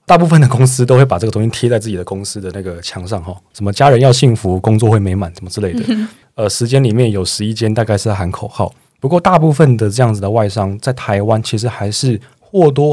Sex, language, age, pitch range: male, Chinese, 20-39, 100-125 Hz